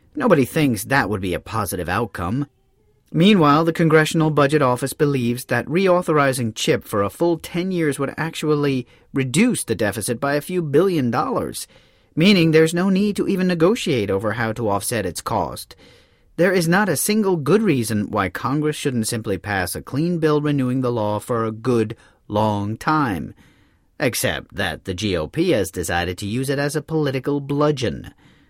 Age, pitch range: 40-59, 115-160 Hz